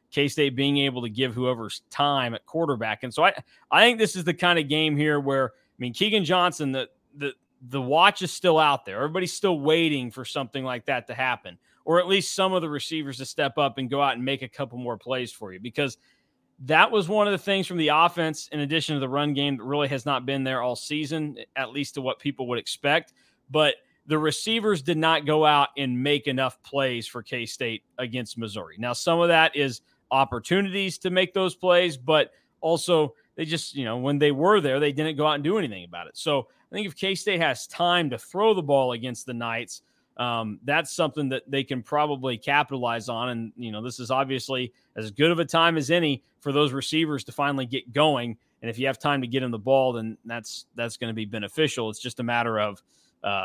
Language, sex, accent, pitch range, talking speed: English, male, American, 125-155 Hz, 230 wpm